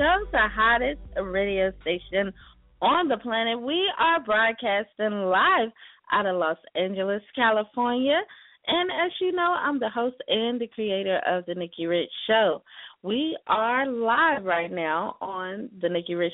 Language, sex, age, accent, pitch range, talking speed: English, female, 30-49, American, 180-245 Hz, 140 wpm